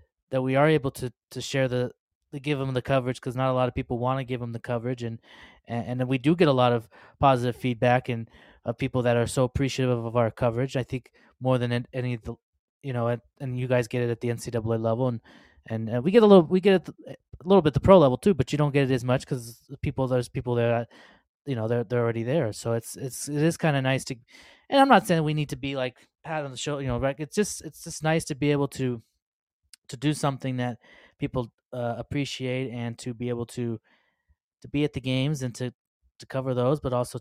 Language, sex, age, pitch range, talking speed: English, male, 20-39, 120-145 Hz, 255 wpm